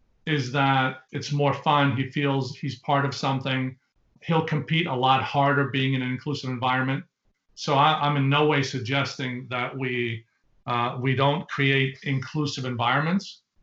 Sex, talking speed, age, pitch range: male, 160 wpm, 40-59, 125-145 Hz